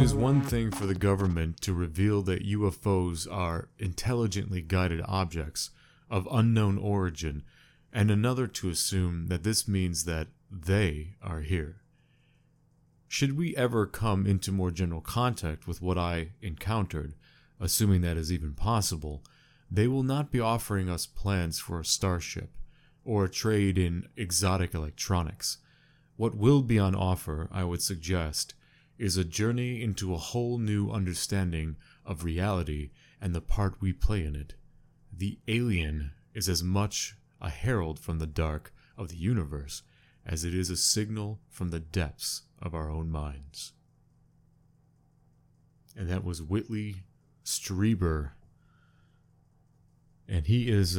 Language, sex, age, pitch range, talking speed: English, male, 30-49, 85-125 Hz, 140 wpm